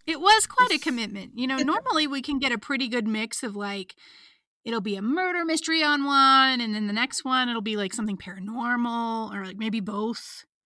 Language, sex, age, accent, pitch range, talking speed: English, female, 30-49, American, 220-290 Hz, 215 wpm